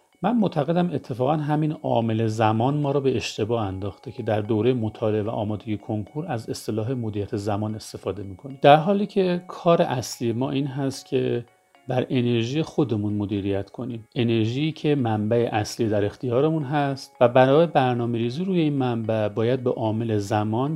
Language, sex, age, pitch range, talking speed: Persian, male, 40-59, 110-145 Hz, 160 wpm